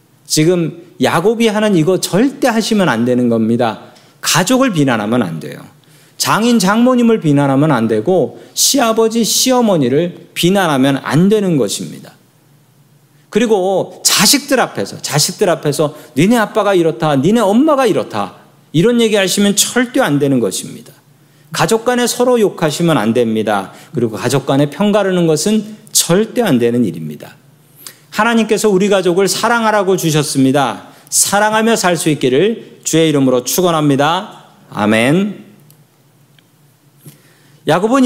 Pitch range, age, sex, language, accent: 145-205 Hz, 40-59, male, Korean, native